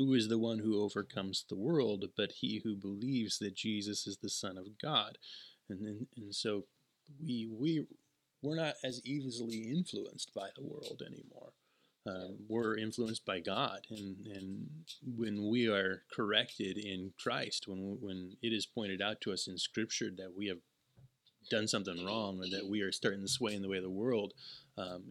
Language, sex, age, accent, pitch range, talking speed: English, male, 30-49, American, 95-125 Hz, 185 wpm